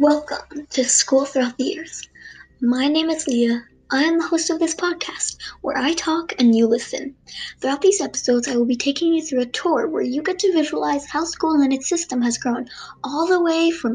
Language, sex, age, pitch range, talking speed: English, male, 10-29, 235-310 Hz, 215 wpm